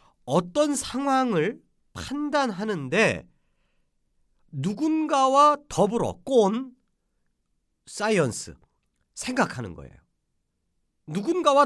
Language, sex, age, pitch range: Korean, male, 40-59, 165-270 Hz